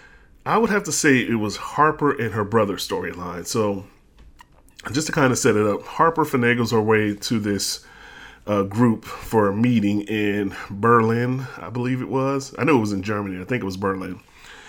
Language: English